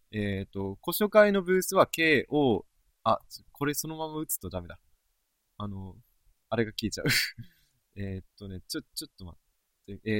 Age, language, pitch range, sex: 20-39, Japanese, 95-140 Hz, male